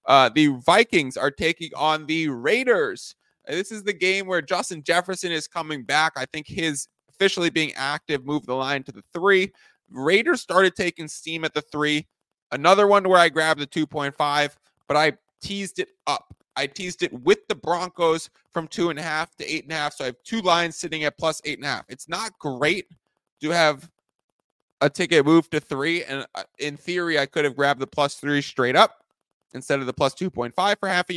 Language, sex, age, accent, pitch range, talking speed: English, male, 20-39, American, 145-175 Hz, 205 wpm